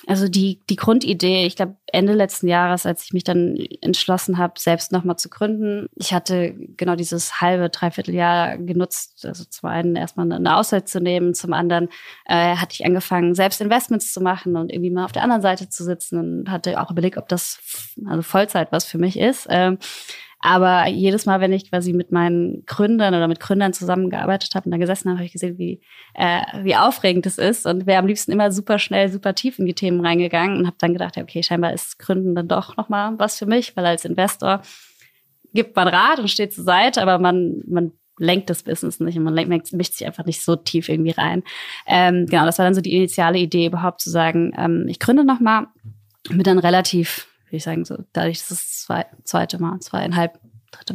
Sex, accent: female, German